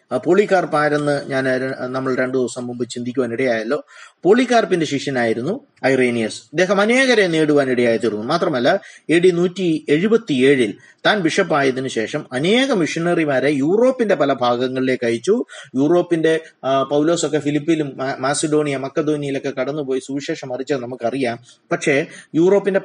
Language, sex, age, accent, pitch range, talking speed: Malayalam, male, 30-49, native, 120-165 Hz, 100 wpm